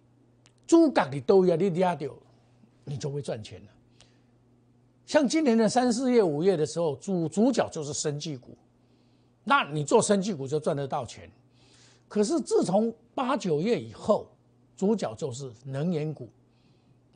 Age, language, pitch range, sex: 60-79, Chinese, 125-195 Hz, male